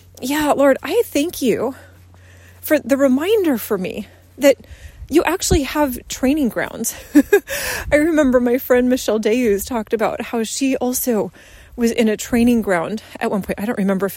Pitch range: 215-280 Hz